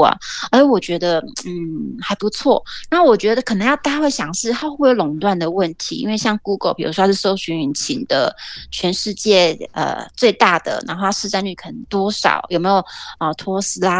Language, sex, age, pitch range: Chinese, female, 30-49, 180-235 Hz